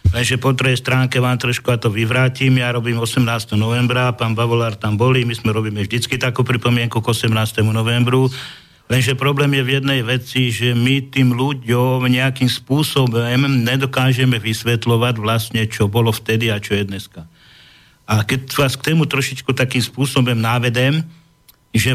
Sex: male